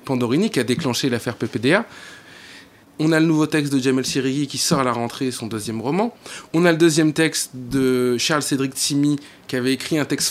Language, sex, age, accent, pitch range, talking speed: French, male, 20-39, French, 130-160 Hz, 210 wpm